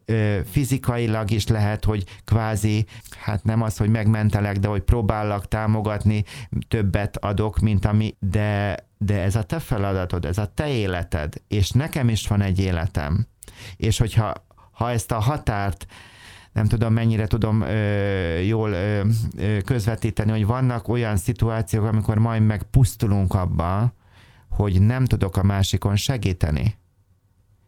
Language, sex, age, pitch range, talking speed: Hungarian, male, 30-49, 100-115 Hz, 135 wpm